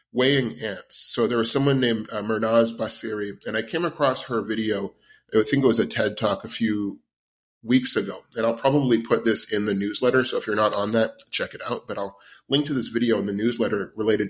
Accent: American